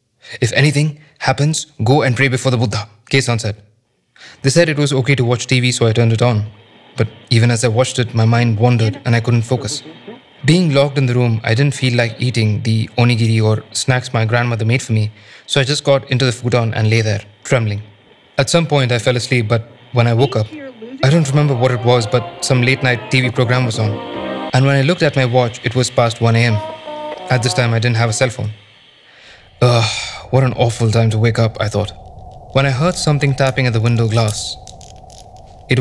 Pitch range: 110-135 Hz